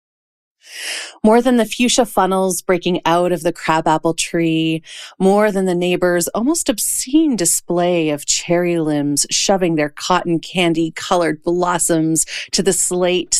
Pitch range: 165-195 Hz